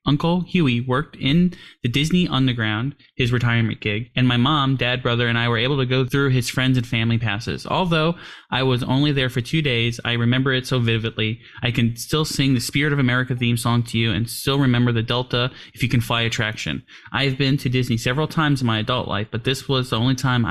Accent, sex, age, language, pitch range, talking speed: American, male, 10-29, English, 120-140 Hz, 230 wpm